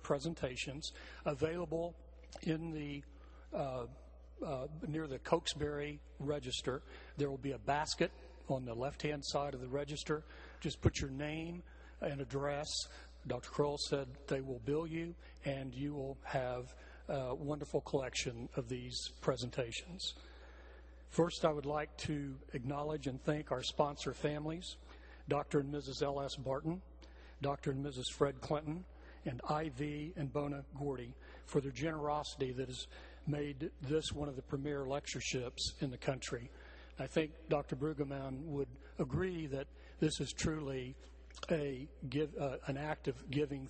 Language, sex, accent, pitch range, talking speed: English, male, American, 130-150 Hz, 145 wpm